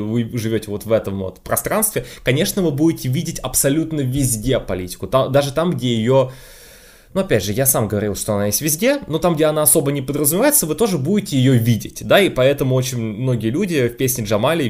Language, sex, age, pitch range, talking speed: Russian, male, 20-39, 110-140 Hz, 200 wpm